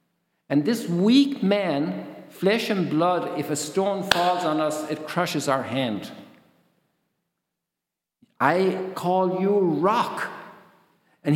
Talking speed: 115 wpm